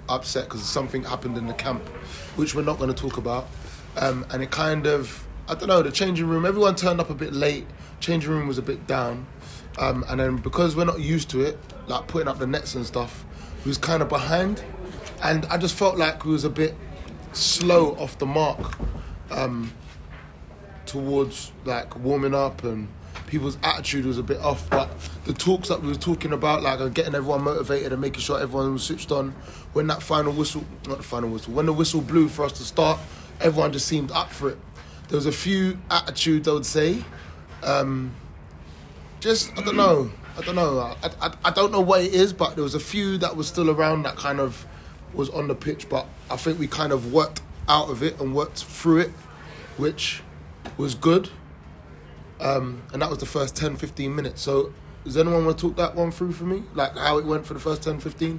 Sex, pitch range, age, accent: male, 125-160 Hz, 20-39, British